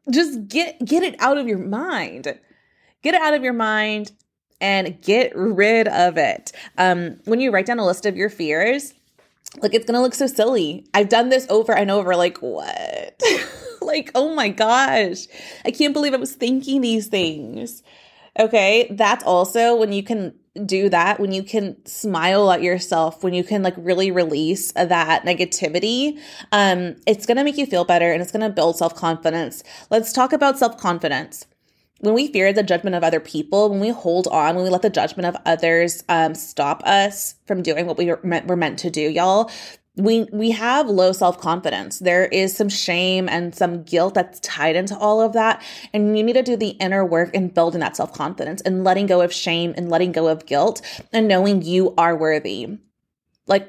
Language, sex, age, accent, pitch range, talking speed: English, female, 20-39, American, 175-225 Hz, 195 wpm